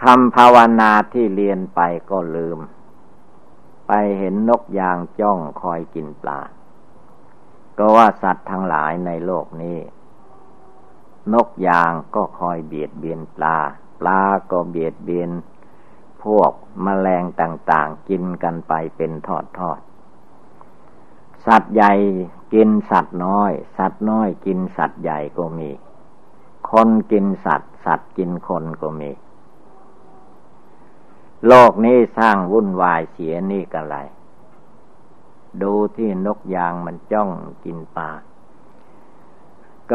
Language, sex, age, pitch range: Thai, male, 60-79, 85-105 Hz